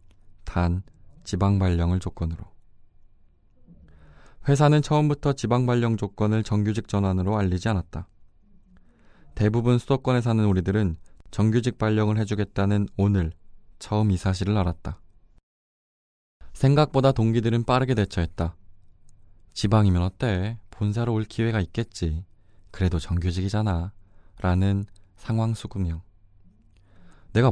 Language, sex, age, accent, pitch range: Korean, male, 20-39, native, 90-110 Hz